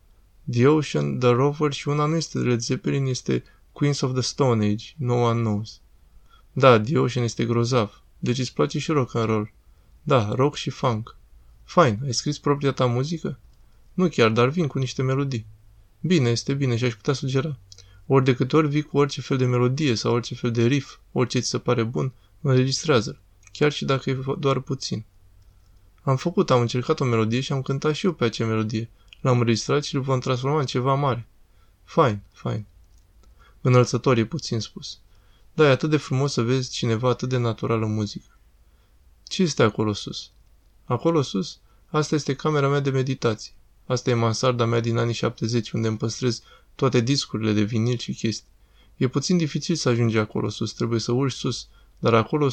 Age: 20-39